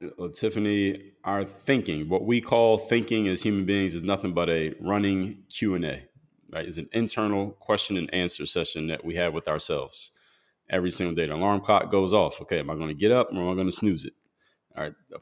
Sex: male